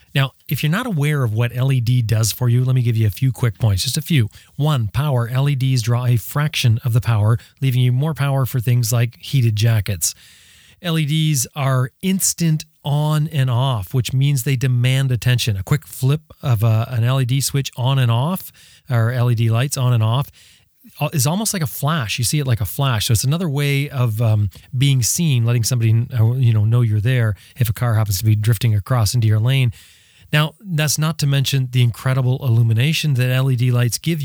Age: 30-49